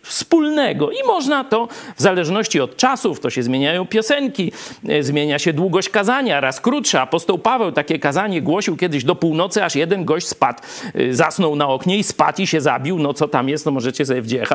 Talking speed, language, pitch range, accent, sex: 195 wpm, Polish, 150-245 Hz, native, male